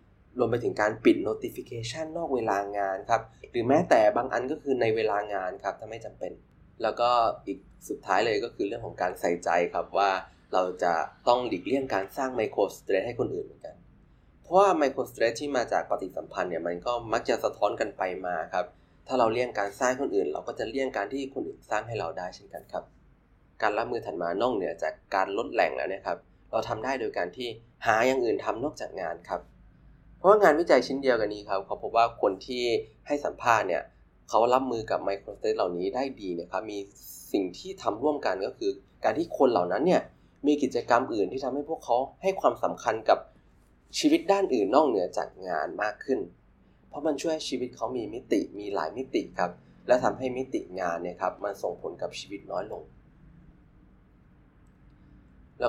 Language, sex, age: Thai, male, 20-39